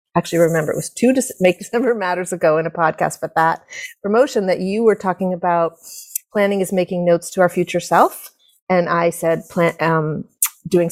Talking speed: 185 wpm